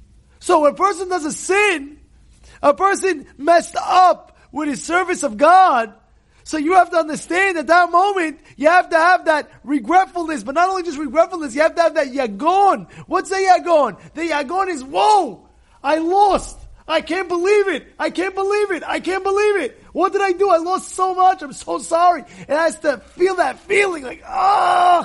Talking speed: 195 wpm